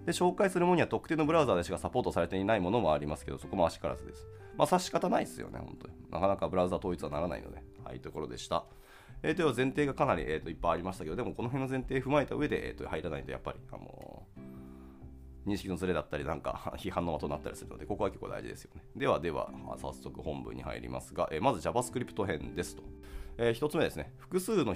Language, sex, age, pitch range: Japanese, male, 30-49, 75-125 Hz